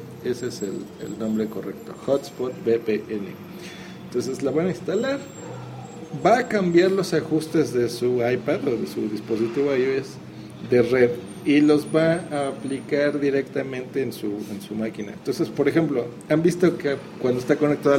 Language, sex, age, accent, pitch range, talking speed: Spanish, male, 50-69, Mexican, 115-150 Hz, 160 wpm